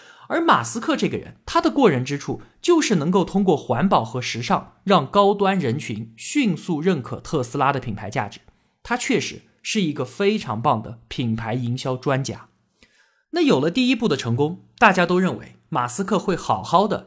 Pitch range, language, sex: 125-210 Hz, Chinese, male